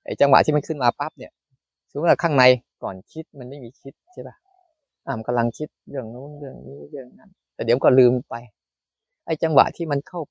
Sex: male